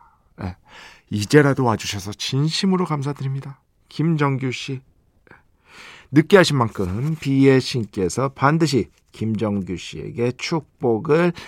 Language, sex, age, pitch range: Korean, male, 40-59, 115-170 Hz